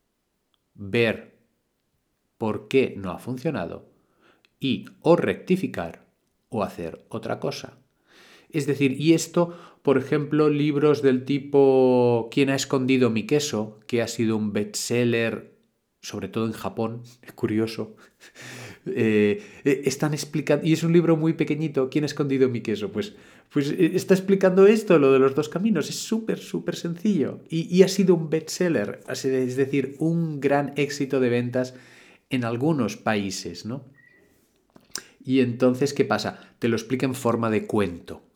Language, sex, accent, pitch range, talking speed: Spanish, male, Spanish, 115-150 Hz, 145 wpm